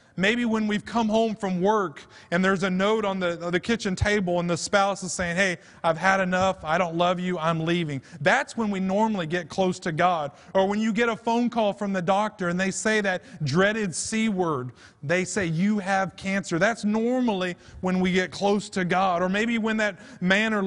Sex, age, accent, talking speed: male, 30-49, American, 240 wpm